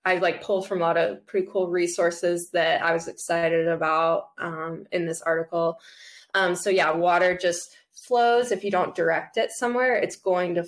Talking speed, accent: 190 wpm, American